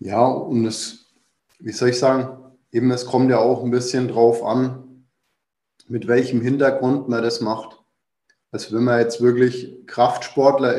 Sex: male